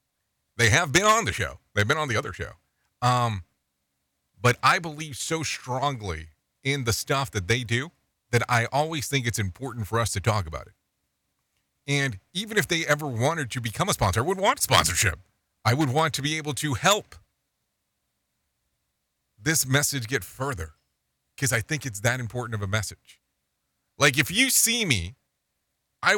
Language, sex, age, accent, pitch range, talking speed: English, male, 40-59, American, 85-135 Hz, 175 wpm